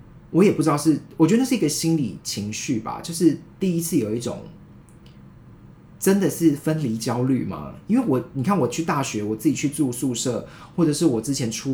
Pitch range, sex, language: 115-155 Hz, male, Chinese